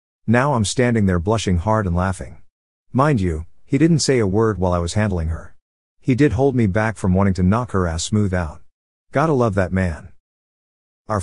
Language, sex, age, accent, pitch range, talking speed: English, male, 50-69, American, 90-115 Hz, 205 wpm